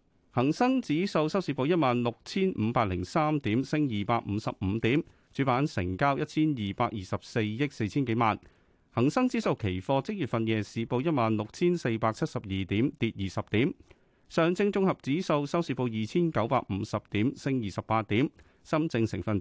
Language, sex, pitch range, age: Chinese, male, 105-150 Hz, 40-59